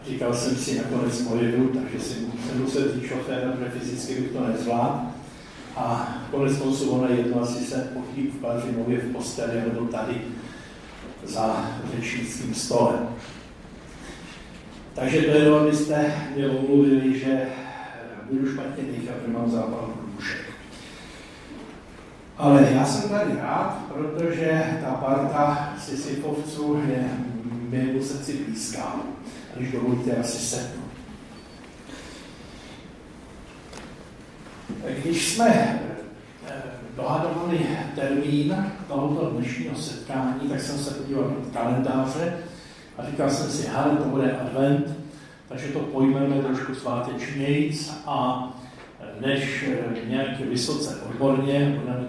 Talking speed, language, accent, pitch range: 110 wpm, Czech, native, 125-140 Hz